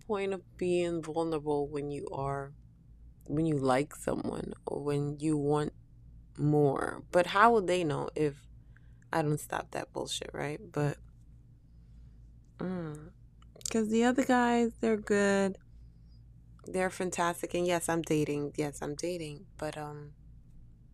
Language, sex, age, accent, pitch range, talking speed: English, female, 20-39, American, 135-165 Hz, 130 wpm